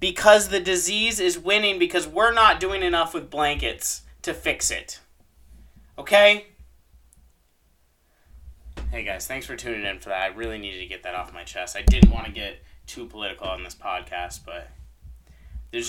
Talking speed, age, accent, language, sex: 170 wpm, 20-39, American, English, male